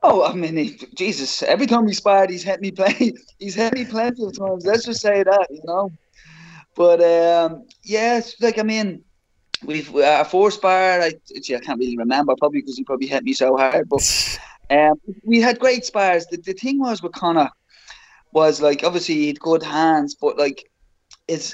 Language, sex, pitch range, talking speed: English, male, 145-220 Hz, 195 wpm